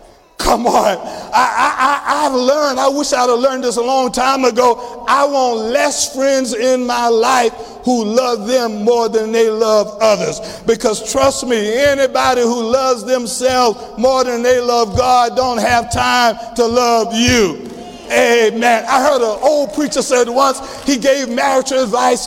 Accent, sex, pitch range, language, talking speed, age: American, male, 235-270 Hz, English, 165 wpm, 50-69